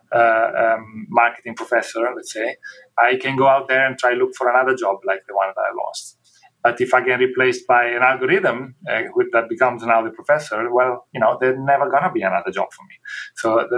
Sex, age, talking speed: male, 30-49, 220 wpm